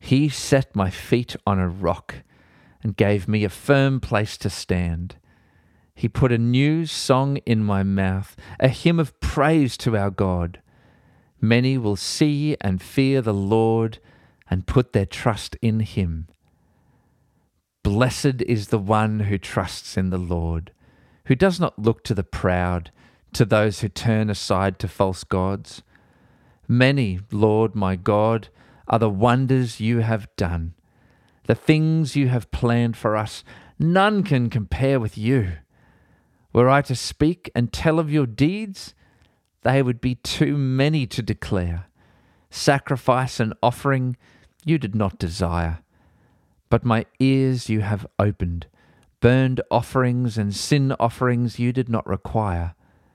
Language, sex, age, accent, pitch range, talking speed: English, male, 40-59, Australian, 95-130 Hz, 145 wpm